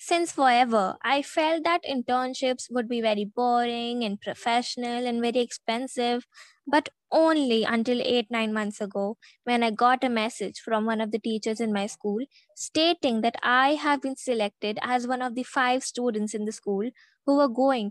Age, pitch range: 20-39, 230-270 Hz